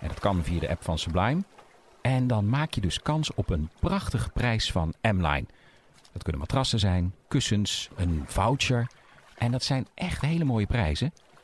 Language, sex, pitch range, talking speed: Dutch, male, 95-135 Hz, 180 wpm